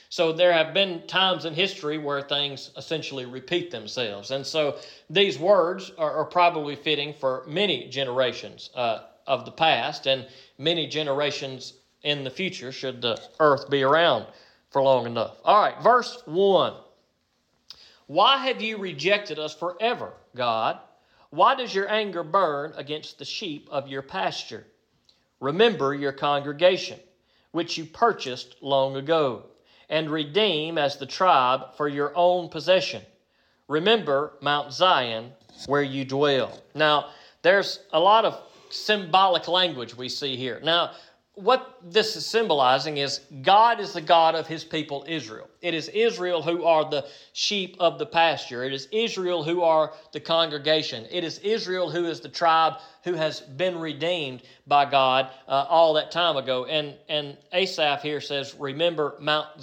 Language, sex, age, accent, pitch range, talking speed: English, male, 40-59, American, 140-180 Hz, 155 wpm